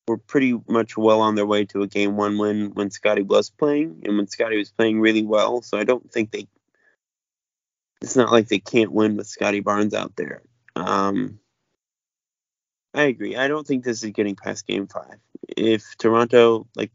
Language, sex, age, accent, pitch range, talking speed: English, male, 20-39, American, 105-125 Hz, 195 wpm